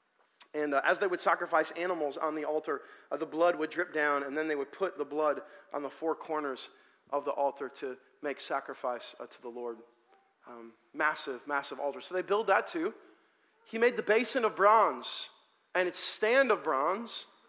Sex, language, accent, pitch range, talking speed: male, English, American, 145-210 Hz, 195 wpm